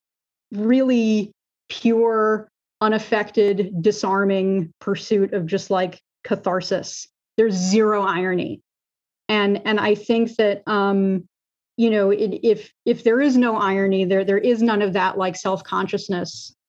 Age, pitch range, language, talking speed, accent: 30-49, 185-210 Hz, English, 125 wpm, American